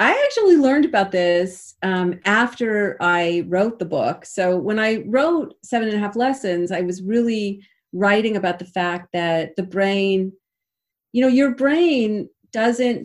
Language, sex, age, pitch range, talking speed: English, female, 40-59, 175-210 Hz, 160 wpm